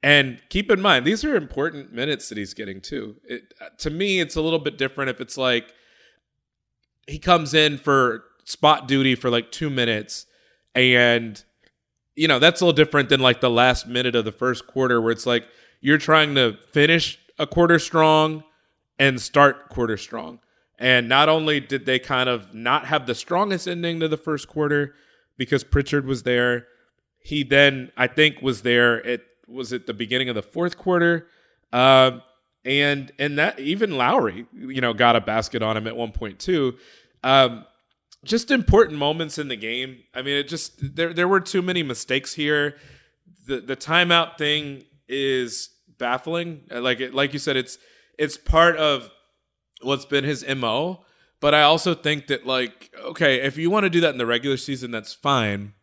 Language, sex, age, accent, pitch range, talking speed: English, male, 30-49, American, 125-155 Hz, 185 wpm